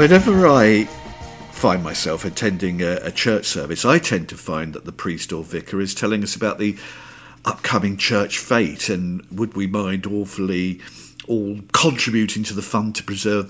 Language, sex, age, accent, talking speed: English, male, 50-69, British, 170 wpm